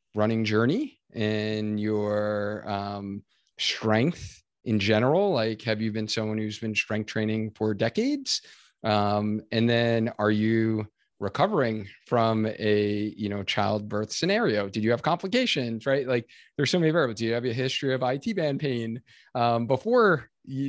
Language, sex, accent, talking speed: English, male, American, 155 wpm